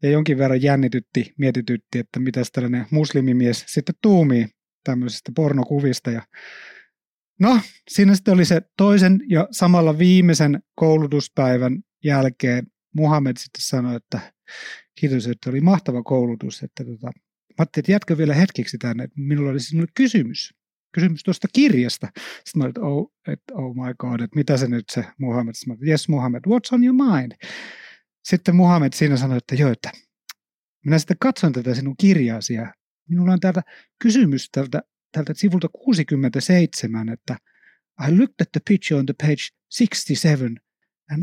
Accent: native